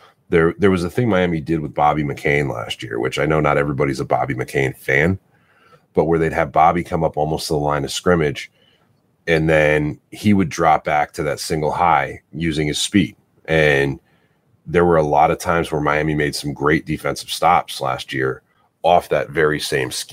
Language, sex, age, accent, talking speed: English, male, 30-49, American, 200 wpm